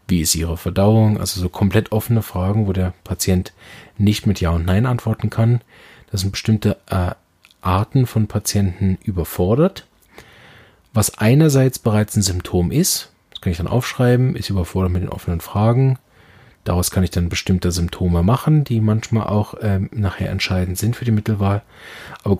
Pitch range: 90-110 Hz